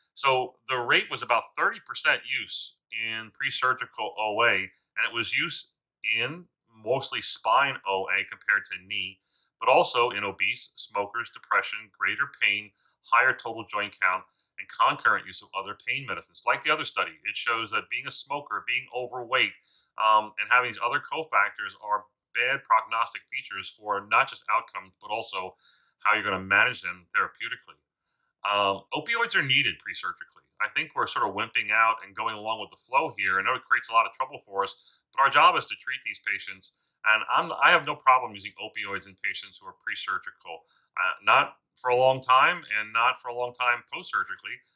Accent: American